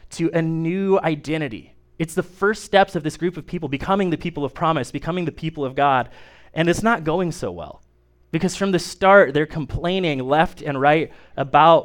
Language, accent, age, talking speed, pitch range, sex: English, American, 20-39, 200 wpm, 140-170 Hz, male